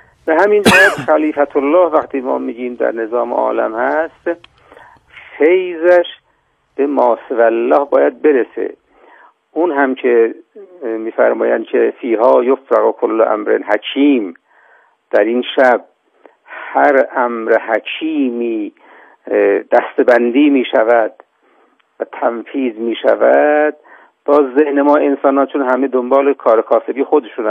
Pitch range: 125-165 Hz